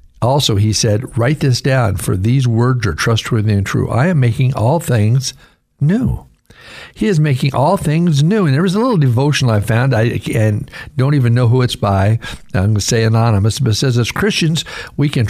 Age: 60-79